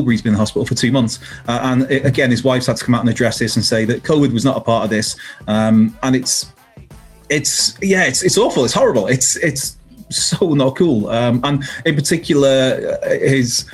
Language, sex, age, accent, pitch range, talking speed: English, male, 30-49, British, 115-135 Hz, 225 wpm